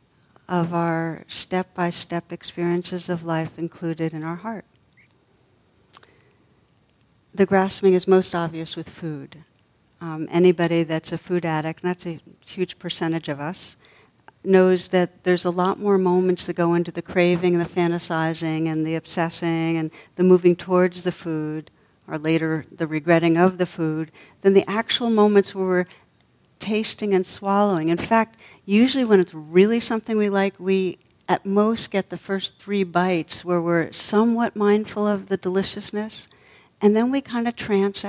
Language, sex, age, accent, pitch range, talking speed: English, female, 60-79, American, 170-200 Hz, 160 wpm